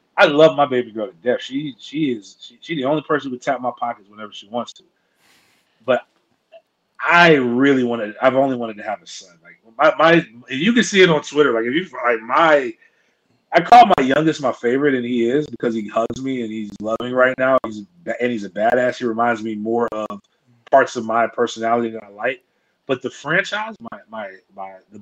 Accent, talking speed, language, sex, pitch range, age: American, 210 wpm, English, male, 120-175 Hz, 30-49